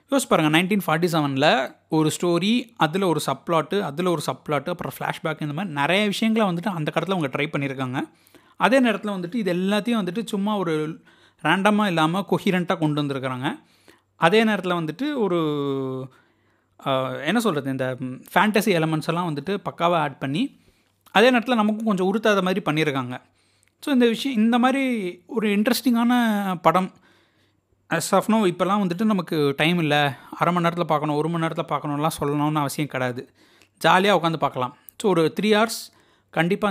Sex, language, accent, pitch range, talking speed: male, Tamil, native, 150-210 Hz, 150 wpm